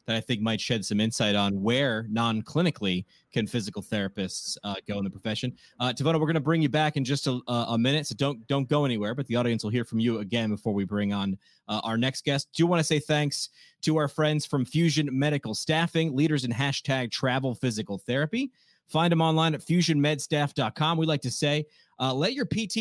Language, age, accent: English, 30-49, American